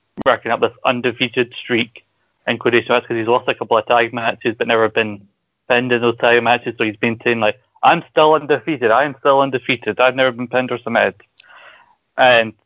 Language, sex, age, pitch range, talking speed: English, male, 20-39, 110-125 Hz, 195 wpm